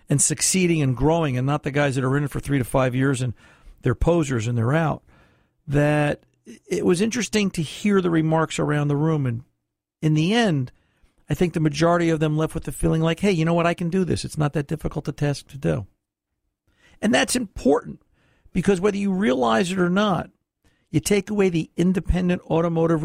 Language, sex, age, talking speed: English, male, 50-69, 210 wpm